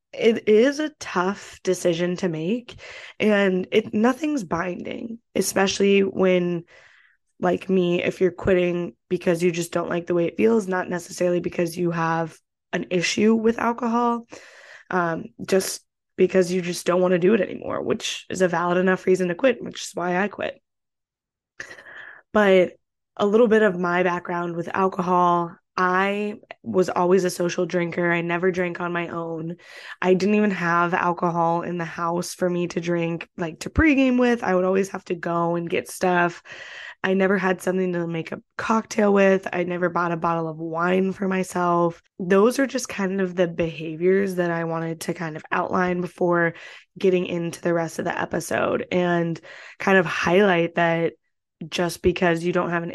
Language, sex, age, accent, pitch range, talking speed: English, female, 20-39, American, 175-195 Hz, 180 wpm